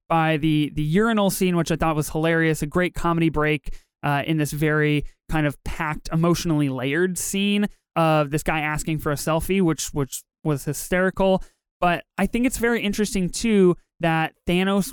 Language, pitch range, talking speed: English, 155-200 Hz, 175 wpm